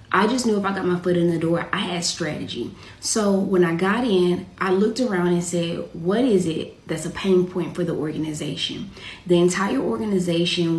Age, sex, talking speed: 20-39, female, 205 wpm